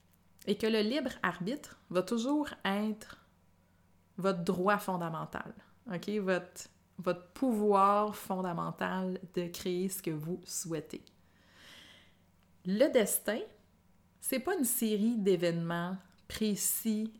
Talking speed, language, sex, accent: 100 wpm, French, female, Canadian